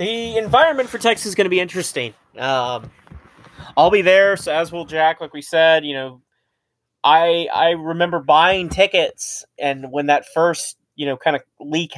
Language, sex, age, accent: English, male, 30-49, American